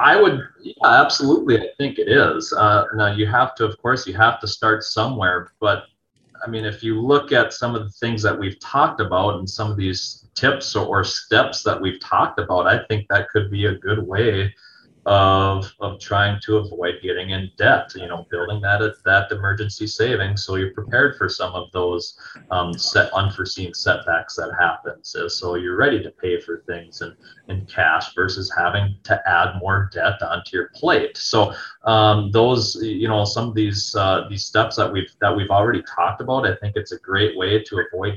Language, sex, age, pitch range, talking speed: English, male, 30-49, 95-110 Hz, 200 wpm